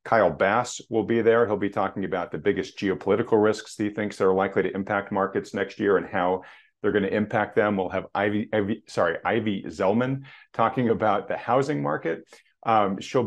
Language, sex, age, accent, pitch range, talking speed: English, male, 40-59, American, 95-110 Hz, 190 wpm